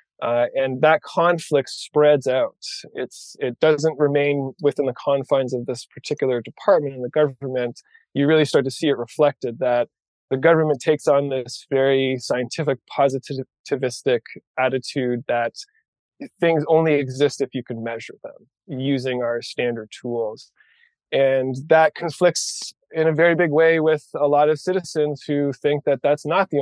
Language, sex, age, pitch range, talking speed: English, male, 20-39, 125-155 Hz, 155 wpm